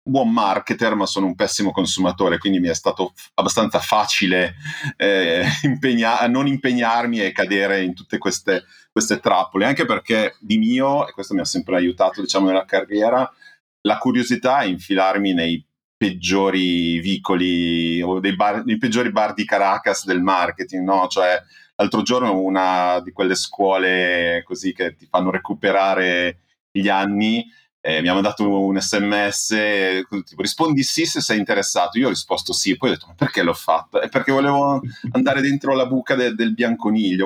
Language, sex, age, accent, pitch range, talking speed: Italian, male, 30-49, native, 95-120 Hz, 170 wpm